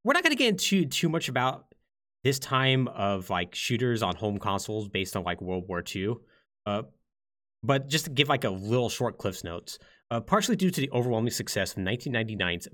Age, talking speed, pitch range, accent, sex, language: 30-49, 200 wpm, 95-135 Hz, American, male, English